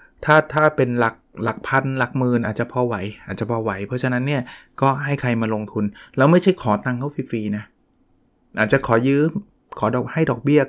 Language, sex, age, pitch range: Thai, male, 20-39, 110-130 Hz